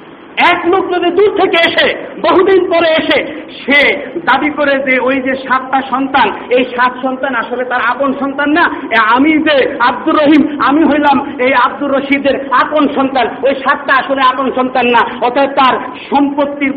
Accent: native